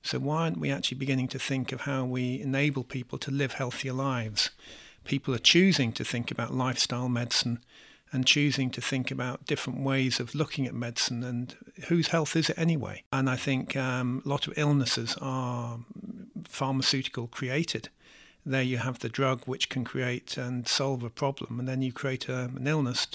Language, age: English, 50-69